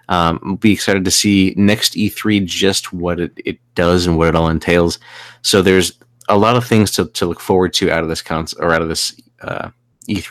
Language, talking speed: English, 215 wpm